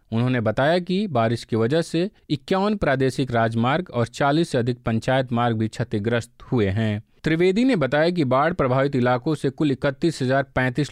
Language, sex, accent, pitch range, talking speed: Hindi, male, native, 120-160 Hz, 165 wpm